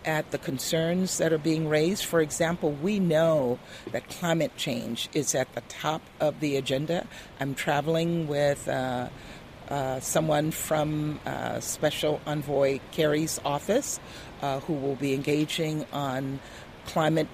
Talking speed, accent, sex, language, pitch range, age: 140 wpm, American, female, English, 135-160 Hz, 50-69